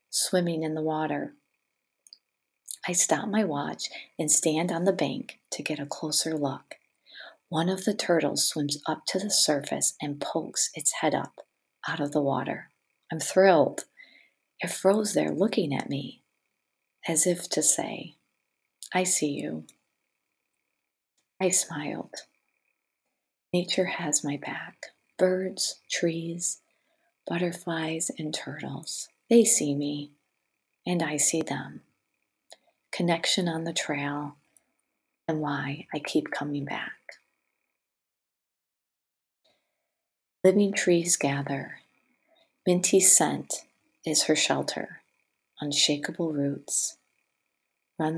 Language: English